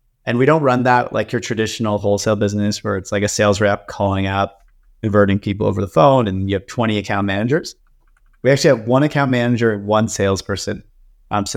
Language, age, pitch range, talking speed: English, 30-49, 100-120 Hz, 205 wpm